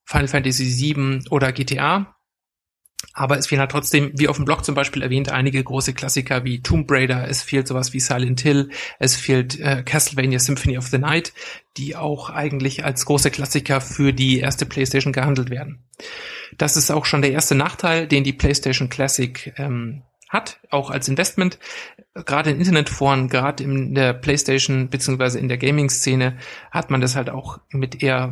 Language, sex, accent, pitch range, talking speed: German, male, German, 130-145 Hz, 175 wpm